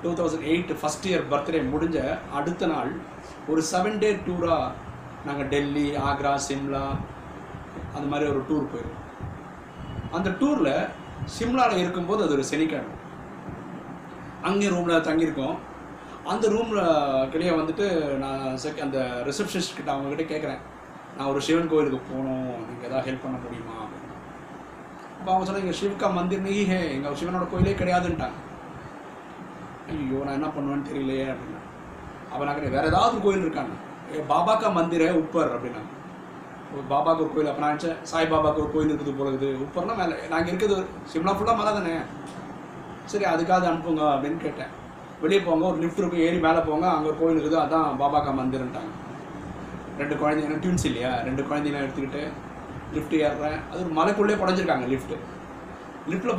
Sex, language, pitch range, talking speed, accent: male, Tamil, 140-180 Hz, 145 wpm, native